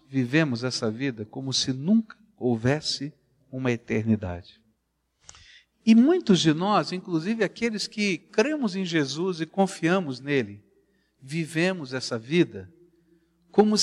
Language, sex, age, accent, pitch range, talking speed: Portuguese, male, 60-79, Brazilian, 135-225 Hz, 115 wpm